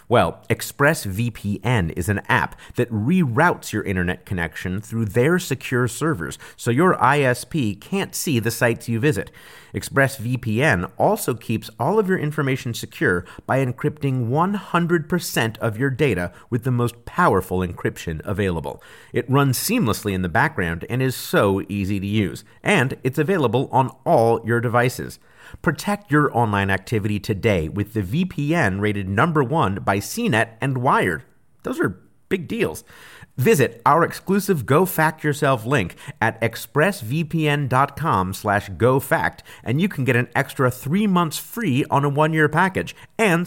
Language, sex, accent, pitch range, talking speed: English, male, American, 110-155 Hz, 145 wpm